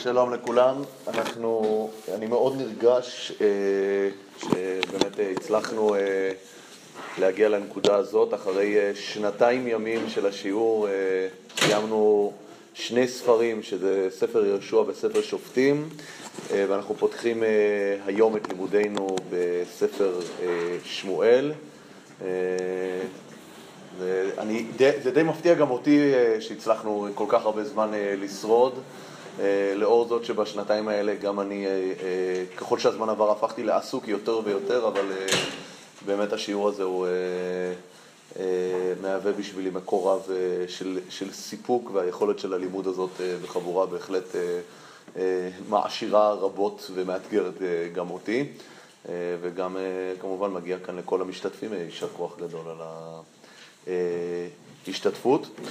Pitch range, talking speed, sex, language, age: 95-125 Hz, 110 wpm, male, Hebrew, 30-49